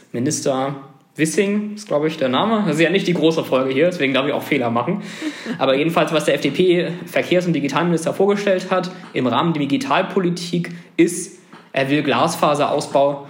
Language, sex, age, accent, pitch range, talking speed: German, male, 20-39, German, 140-190 Hz, 170 wpm